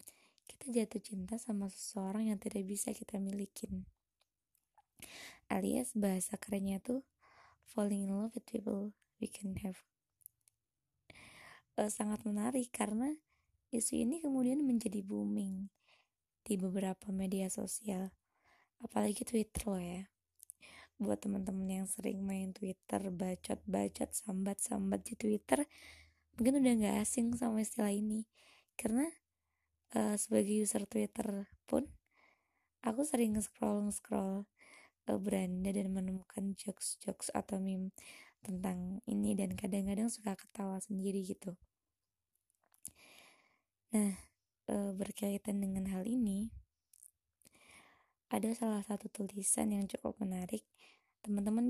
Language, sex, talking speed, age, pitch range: Indonesian, female, 115 wpm, 20-39, 190-225 Hz